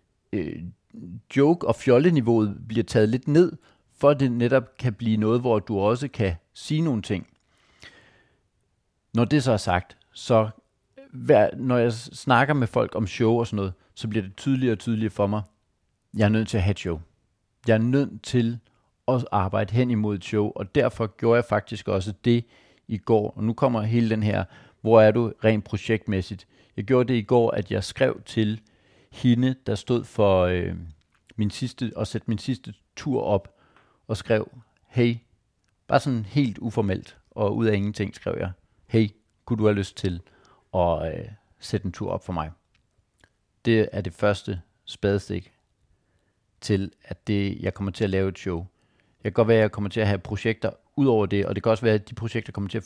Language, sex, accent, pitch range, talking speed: Danish, male, native, 100-120 Hz, 195 wpm